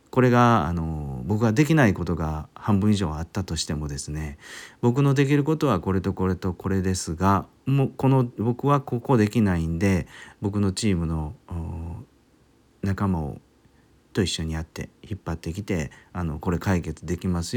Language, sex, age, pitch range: Japanese, male, 40-59, 80-115 Hz